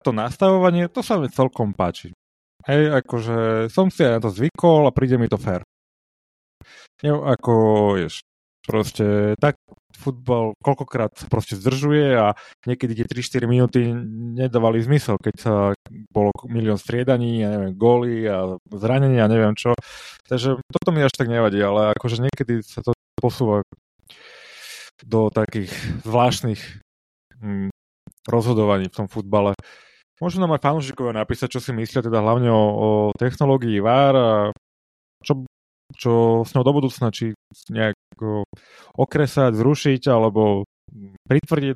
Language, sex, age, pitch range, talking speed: Slovak, male, 30-49, 105-130 Hz, 135 wpm